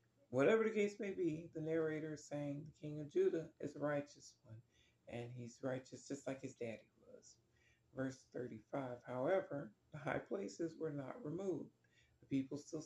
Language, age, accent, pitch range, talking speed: English, 40-59, American, 125-150 Hz, 175 wpm